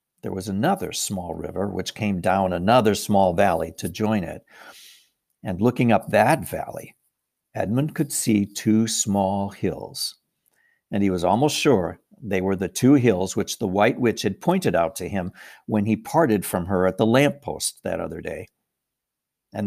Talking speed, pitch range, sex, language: 175 wpm, 100-135 Hz, male, English